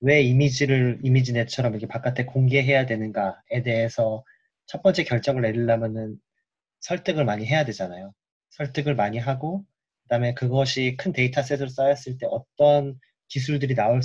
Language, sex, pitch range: Korean, male, 120-145 Hz